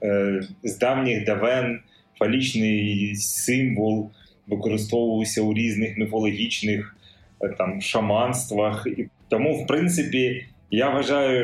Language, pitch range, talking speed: Ukrainian, 105-130 Hz, 90 wpm